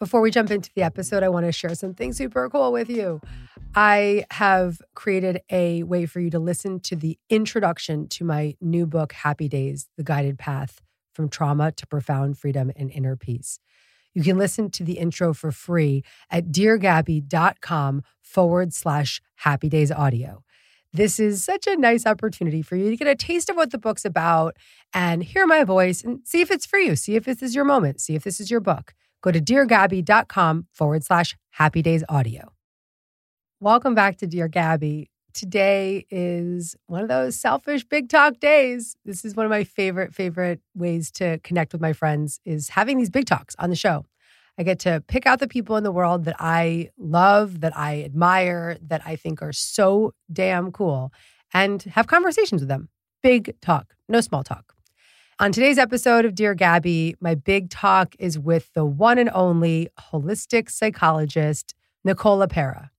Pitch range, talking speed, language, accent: 155-205 Hz, 185 wpm, English, American